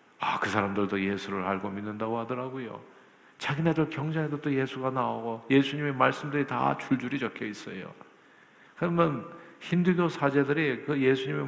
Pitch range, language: 115-165 Hz, Korean